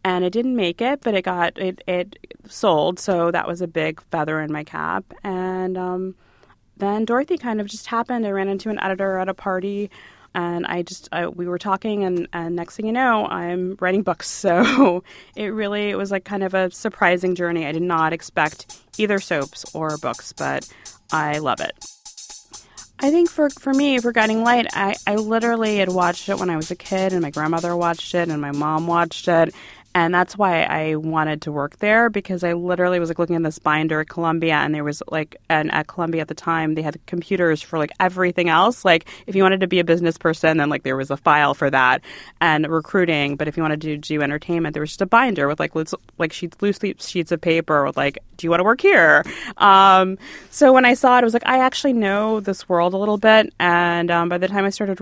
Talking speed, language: 230 wpm, English